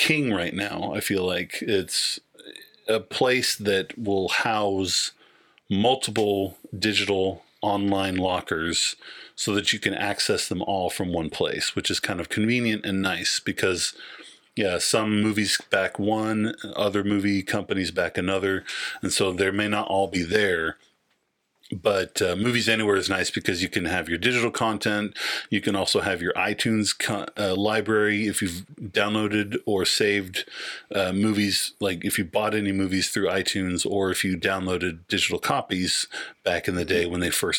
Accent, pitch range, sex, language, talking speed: American, 95-110 Hz, male, English, 160 wpm